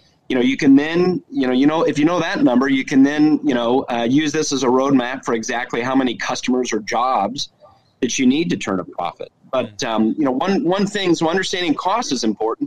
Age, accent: 30-49, American